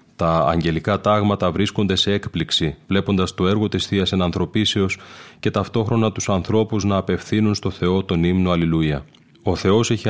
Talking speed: 155 wpm